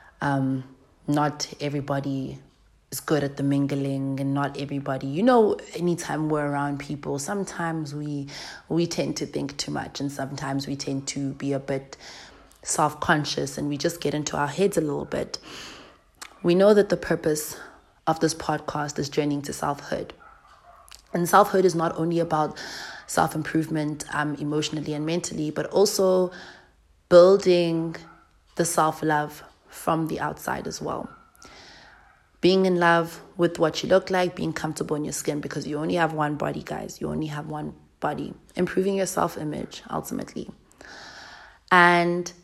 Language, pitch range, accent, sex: English, 145-175 Hz, South African, female